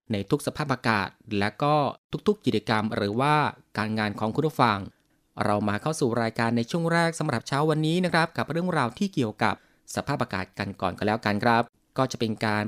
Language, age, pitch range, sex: Thai, 20-39, 110-145 Hz, male